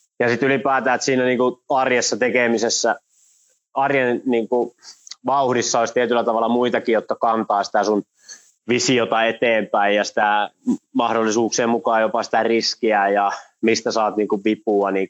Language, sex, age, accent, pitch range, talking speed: Finnish, male, 20-39, native, 110-135 Hz, 135 wpm